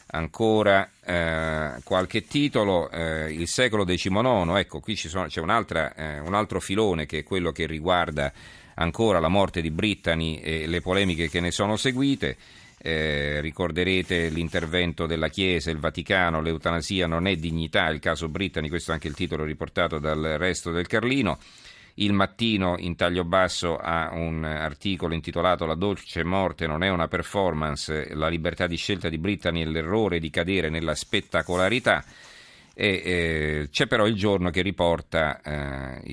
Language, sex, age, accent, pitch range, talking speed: Italian, male, 50-69, native, 80-95 Hz, 160 wpm